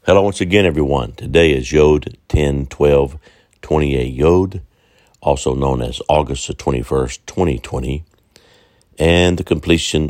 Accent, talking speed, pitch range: American, 145 wpm, 70-80 Hz